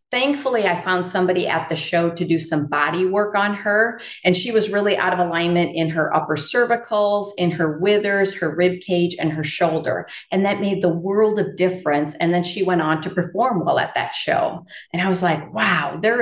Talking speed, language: 215 wpm, English